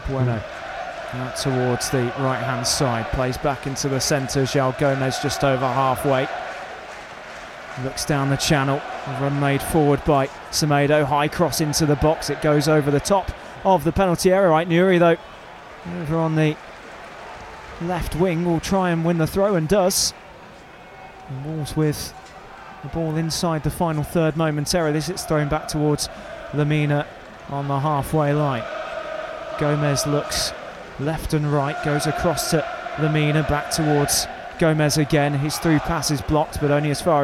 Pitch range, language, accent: 145-160 Hz, English, British